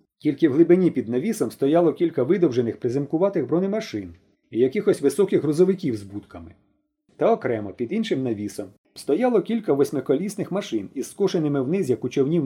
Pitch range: 125-200 Hz